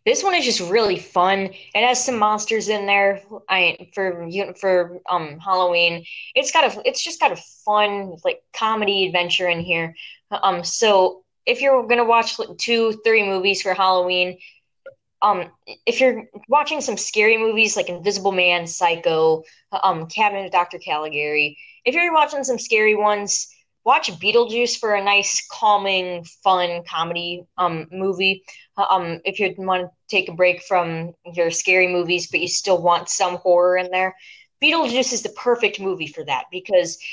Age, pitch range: 10-29, 180-235 Hz